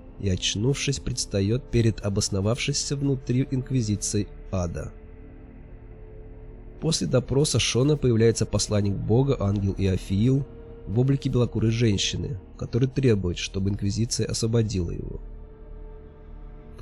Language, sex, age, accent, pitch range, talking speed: Russian, male, 20-39, native, 95-120 Hz, 100 wpm